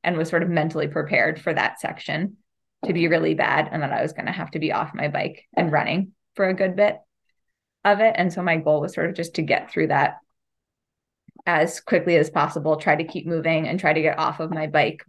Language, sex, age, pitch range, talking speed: English, female, 20-39, 155-180 Hz, 240 wpm